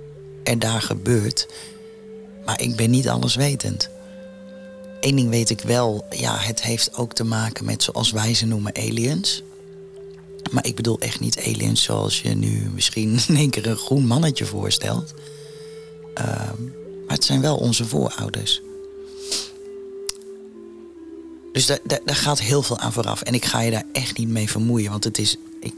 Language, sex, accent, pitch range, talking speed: Dutch, male, Dutch, 110-145 Hz, 165 wpm